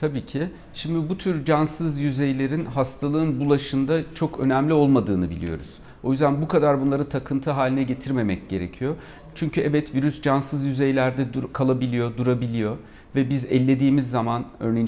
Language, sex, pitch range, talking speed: Turkish, male, 125-155 Hz, 135 wpm